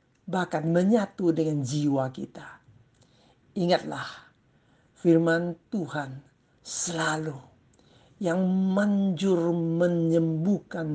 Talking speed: 65 wpm